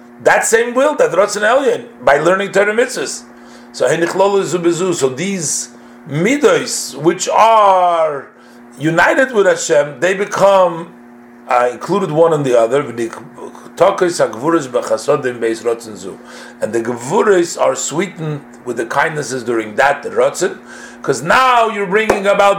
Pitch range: 130-185 Hz